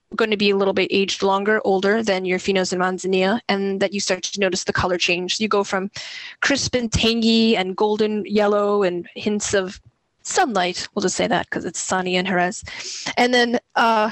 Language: English